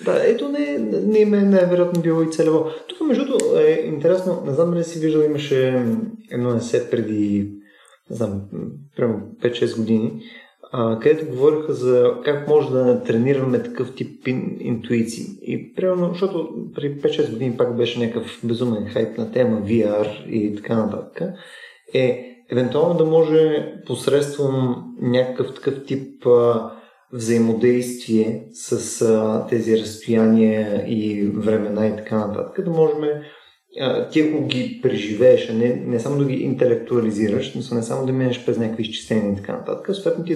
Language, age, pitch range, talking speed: Bulgarian, 30-49, 115-150 Hz, 150 wpm